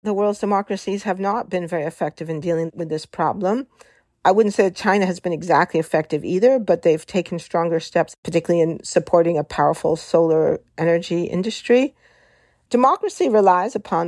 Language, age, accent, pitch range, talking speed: English, 50-69, American, 165-200 Hz, 165 wpm